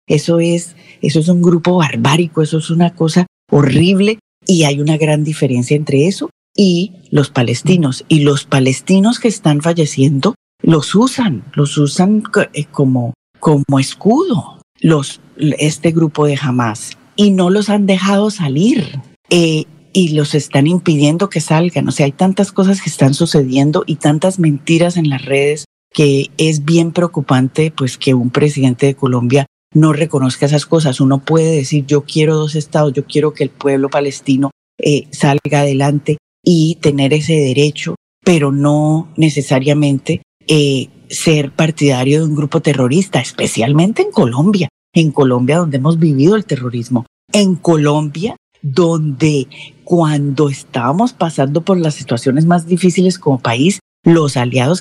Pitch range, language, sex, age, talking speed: 140-170 Hz, Spanish, female, 40-59, 150 wpm